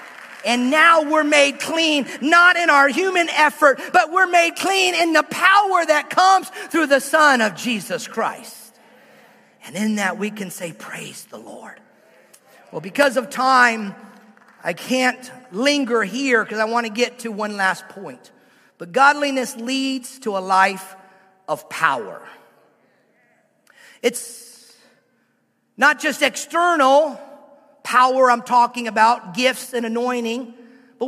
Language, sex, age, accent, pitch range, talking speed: English, male, 40-59, American, 235-310 Hz, 135 wpm